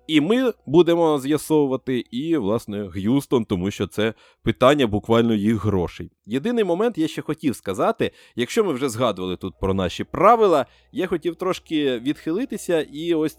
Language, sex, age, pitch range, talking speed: Ukrainian, male, 20-39, 95-145 Hz, 150 wpm